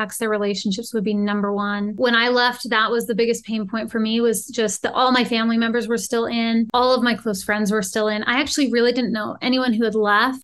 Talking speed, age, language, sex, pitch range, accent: 255 wpm, 20-39, English, female, 220-260 Hz, American